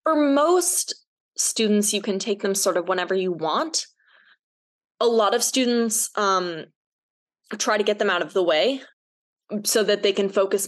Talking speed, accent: 170 wpm, American